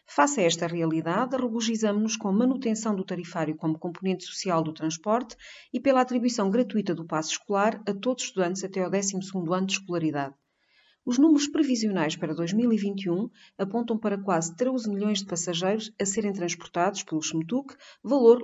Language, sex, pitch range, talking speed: Portuguese, female, 180-230 Hz, 165 wpm